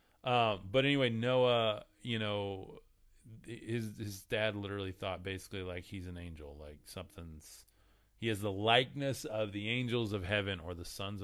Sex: male